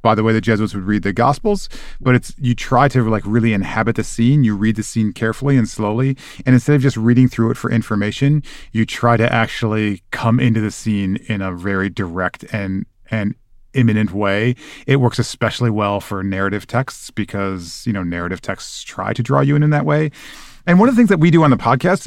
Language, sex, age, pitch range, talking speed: English, male, 30-49, 110-135 Hz, 225 wpm